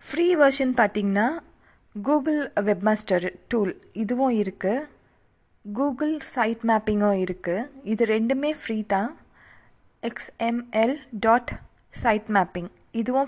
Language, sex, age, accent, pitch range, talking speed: Tamil, female, 20-39, native, 195-240 Hz, 95 wpm